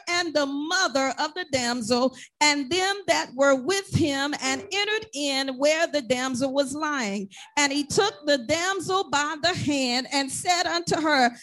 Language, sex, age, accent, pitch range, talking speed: English, female, 40-59, American, 255-345 Hz, 165 wpm